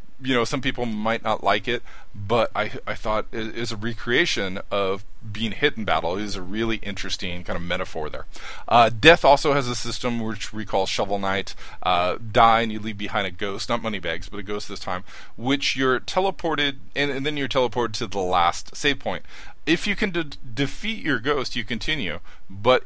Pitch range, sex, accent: 100-130 Hz, male, American